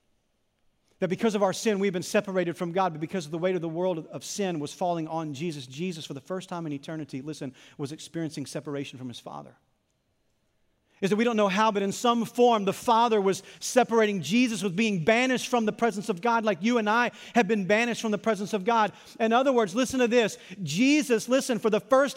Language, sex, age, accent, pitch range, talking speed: English, male, 40-59, American, 175-235 Hz, 225 wpm